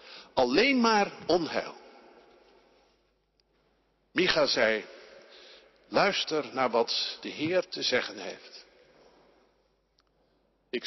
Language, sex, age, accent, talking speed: Dutch, male, 50-69, Dutch, 75 wpm